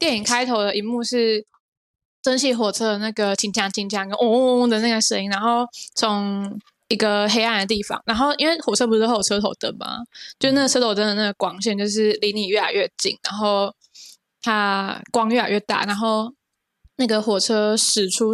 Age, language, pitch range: 10-29, Chinese, 200-240 Hz